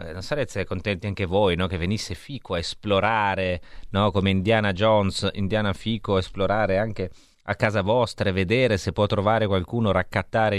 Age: 30-49